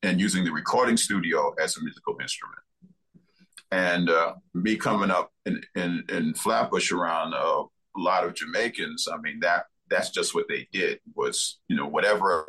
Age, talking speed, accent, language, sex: 50-69, 175 wpm, American, English, male